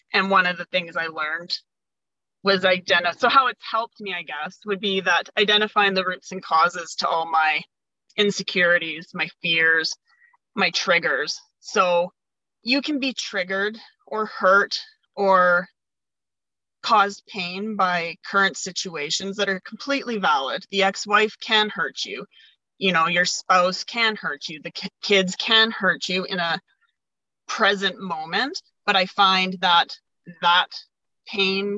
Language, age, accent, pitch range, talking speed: English, 30-49, American, 175-215 Hz, 145 wpm